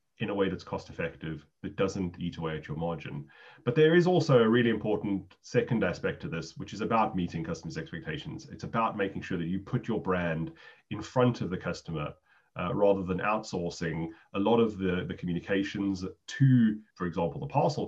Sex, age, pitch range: male, 30-49, 90-120 Hz